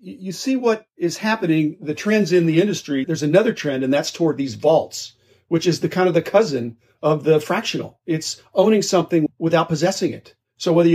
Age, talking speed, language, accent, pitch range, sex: 50-69, 195 wpm, English, American, 150-185 Hz, male